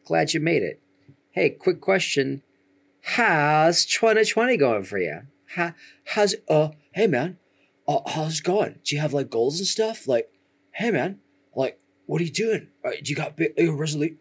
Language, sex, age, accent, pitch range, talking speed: English, male, 30-49, American, 110-150 Hz, 180 wpm